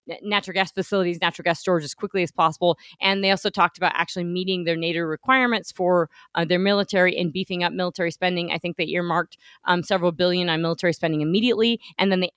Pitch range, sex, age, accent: 155-190 Hz, female, 30-49, American